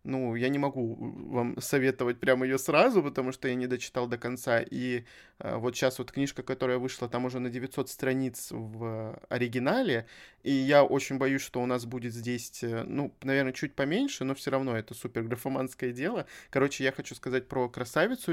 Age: 20-39